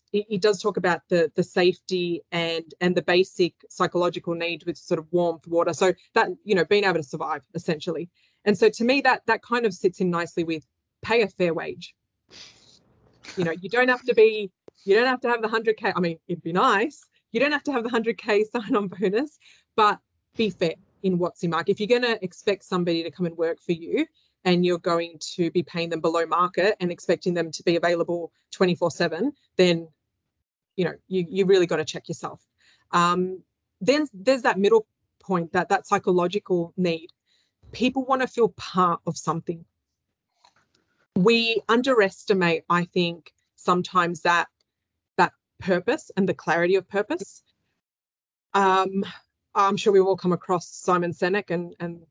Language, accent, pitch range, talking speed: English, Australian, 170-210 Hz, 180 wpm